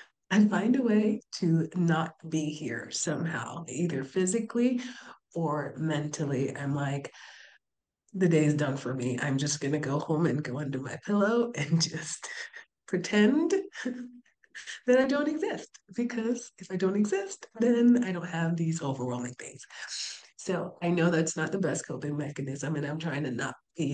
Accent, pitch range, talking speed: American, 140-180 Hz, 165 wpm